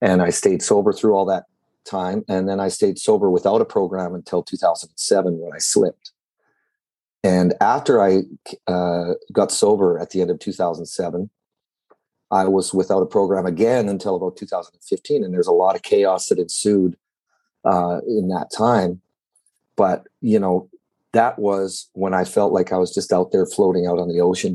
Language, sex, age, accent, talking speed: English, male, 40-59, American, 175 wpm